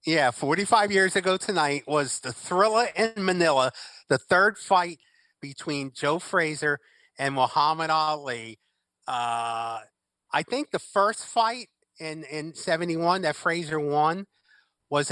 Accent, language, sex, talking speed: American, English, male, 125 wpm